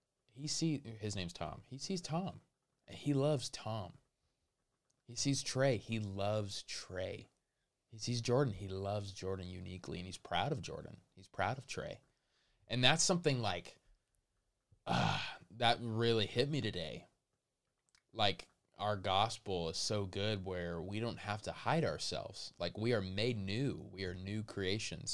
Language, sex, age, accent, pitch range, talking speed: English, male, 20-39, American, 95-125 Hz, 160 wpm